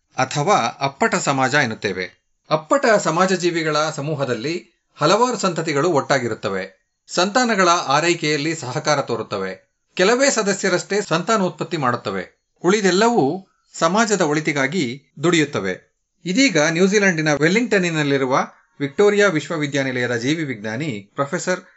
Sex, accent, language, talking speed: male, native, Kannada, 85 wpm